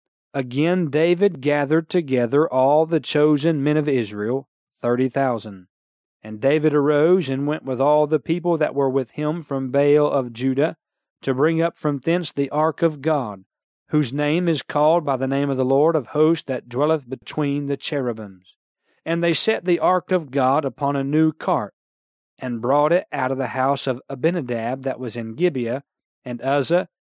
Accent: American